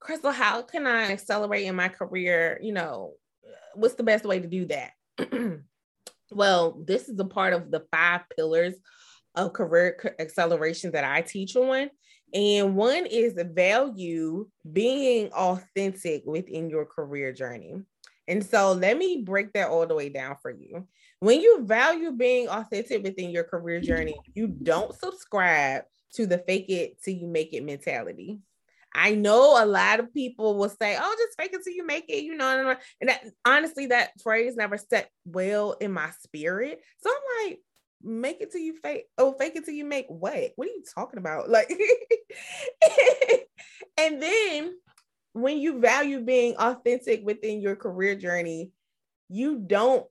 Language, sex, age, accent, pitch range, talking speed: English, female, 20-39, American, 185-275 Hz, 165 wpm